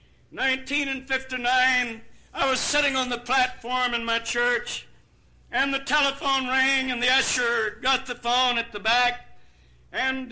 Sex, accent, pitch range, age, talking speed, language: male, American, 230-260 Hz, 60-79, 150 wpm, English